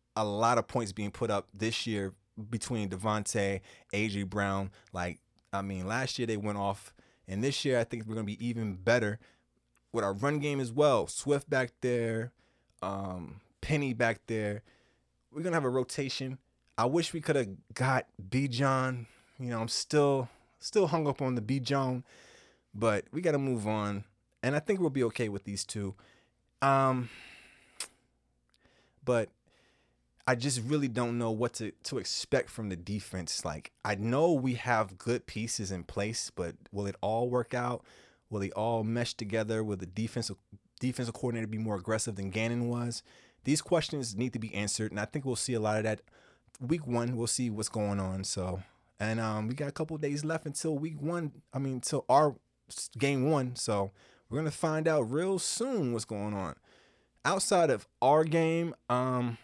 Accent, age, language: American, 20-39, English